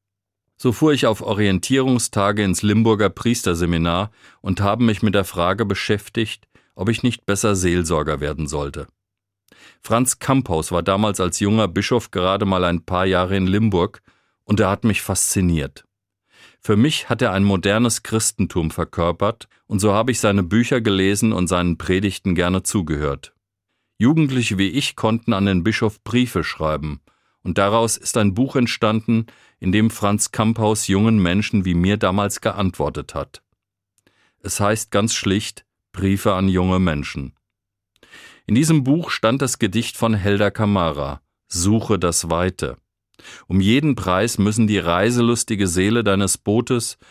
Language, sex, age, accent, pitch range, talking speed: German, male, 40-59, German, 90-110 Hz, 150 wpm